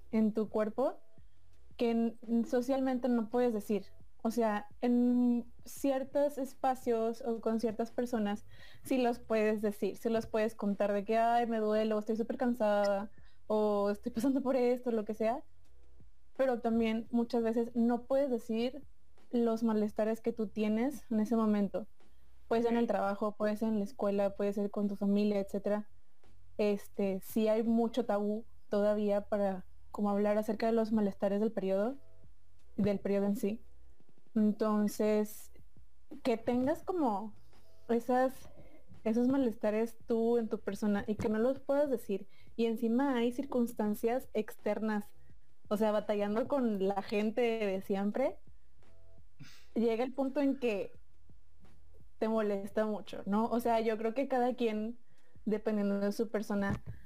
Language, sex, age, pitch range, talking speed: Spanish, female, 20-39, 205-235 Hz, 150 wpm